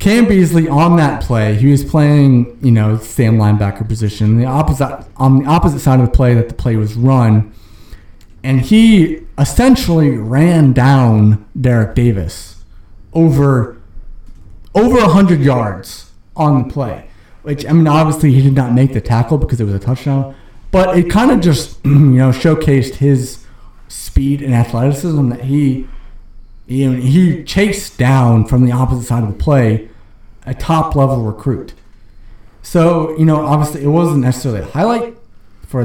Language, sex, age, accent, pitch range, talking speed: English, male, 30-49, American, 105-140 Hz, 160 wpm